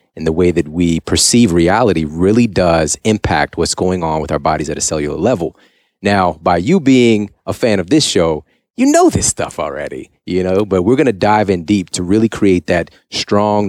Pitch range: 85-110 Hz